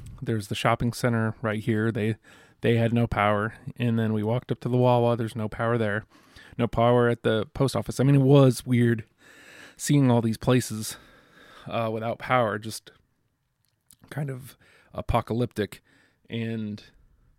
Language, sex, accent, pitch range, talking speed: English, male, American, 110-125 Hz, 160 wpm